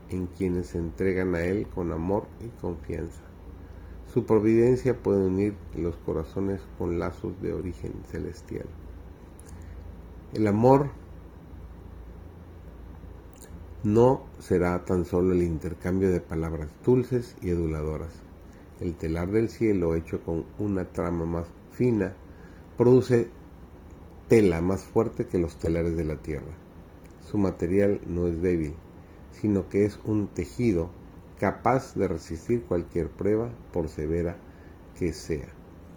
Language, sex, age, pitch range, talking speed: Spanish, male, 50-69, 85-95 Hz, 120 wpm